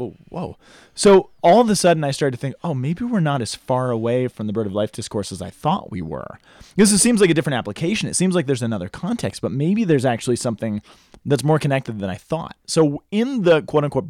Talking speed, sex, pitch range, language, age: 245 wpm, male, 110-155 Hz, English, 30-49